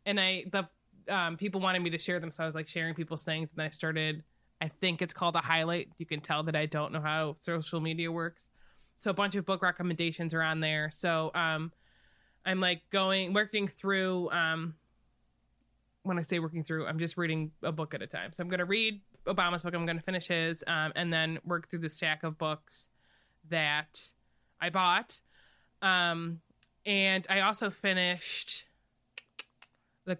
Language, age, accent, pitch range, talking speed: English, 20-39, American, 160-185 Hz, 190 wpm